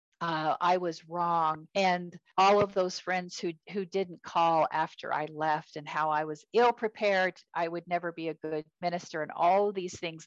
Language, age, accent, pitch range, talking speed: English, 50-69, American, 160-200 Hz, 195 wpm